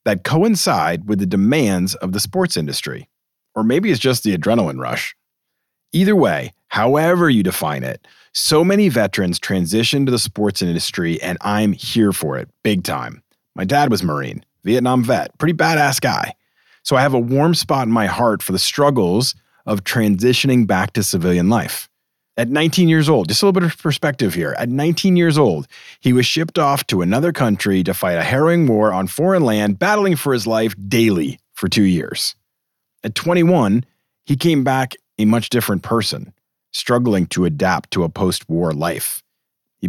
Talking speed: 180 wpm